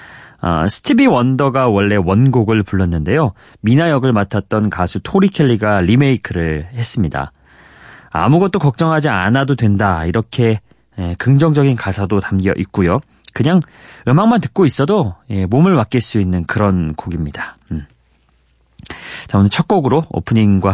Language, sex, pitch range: Korean, male, 95-145 Hz